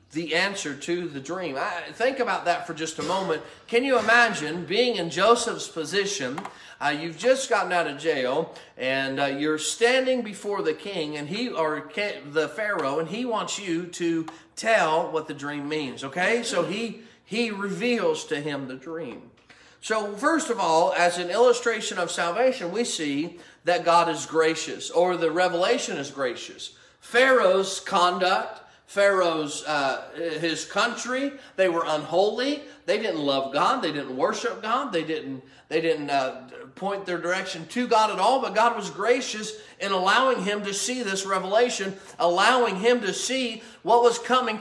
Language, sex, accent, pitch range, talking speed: English, male, American, 165-235 Hz, 170 wpm